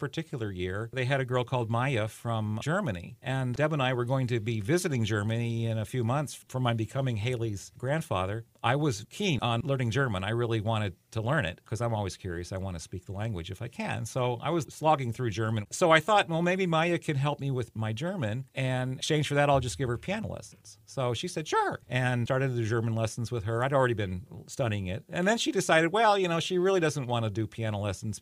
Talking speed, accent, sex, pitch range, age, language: 245 wpm, American, male, 110-140 Hz, 40-59, English